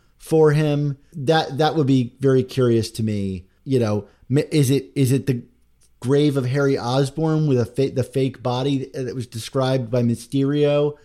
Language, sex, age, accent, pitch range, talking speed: English, male, 30-49, American, 115-135 Hz, 175 wpm